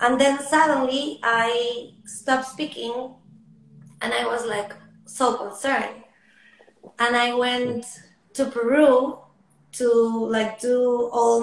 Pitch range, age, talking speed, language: 205-240 Hz, 20-39, 110 wpm, German